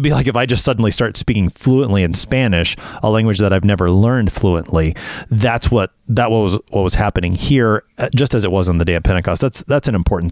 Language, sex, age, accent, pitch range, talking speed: English, male, 30-49, American, 95-135 Hz, 225 wpm